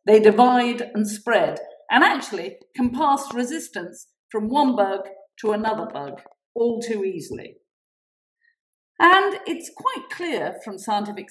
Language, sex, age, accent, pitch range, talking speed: English, female, 50-69, British, 200-290 Hz, 125 wpm